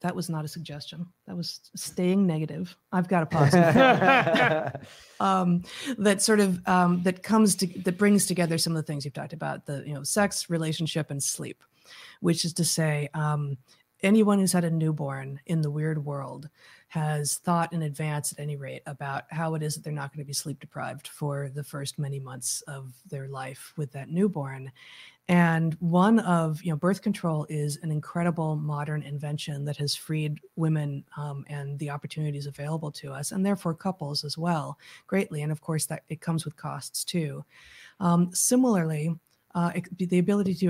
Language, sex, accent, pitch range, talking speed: English, female, American, 145-175 Hz, 185 wpm